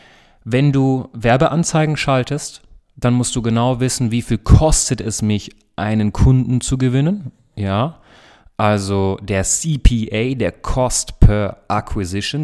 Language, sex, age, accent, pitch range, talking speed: German, male, 30-49, German, 100-130 Hz, 125 wpm